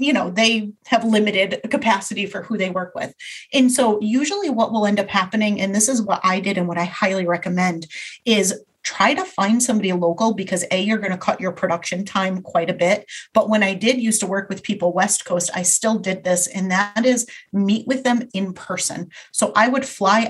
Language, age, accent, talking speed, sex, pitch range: English, 30-49, American, 220 wpm, female, 185-215 Hz